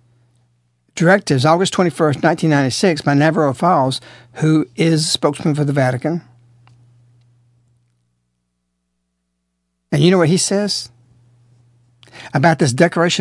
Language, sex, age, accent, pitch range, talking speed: English, male, 60-79, American, 120-175 Hz, 105 wpm